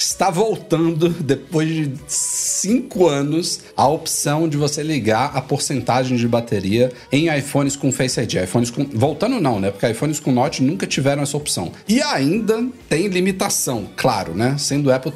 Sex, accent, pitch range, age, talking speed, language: male, Brazilian, 110-155 Hz, 40-59, 160 wpm, Portuguese